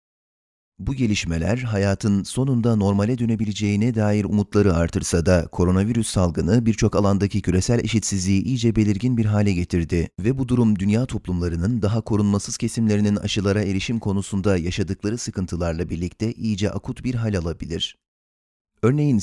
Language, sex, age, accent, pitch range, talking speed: Turkish, male, 30-49, native, 90-115 Hz, 130 wpm